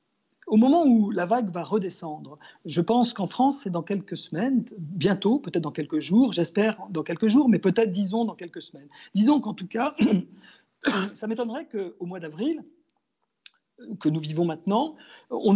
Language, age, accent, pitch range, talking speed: French, 40-59, French, 170-235 Hz, 170 wpm